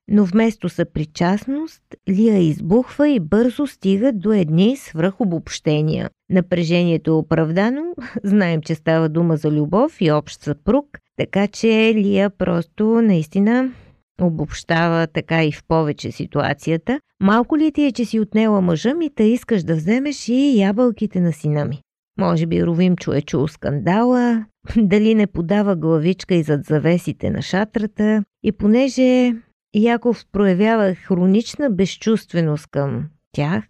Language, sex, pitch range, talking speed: Bulgarian, female, 160-220 Hz, 135 wpm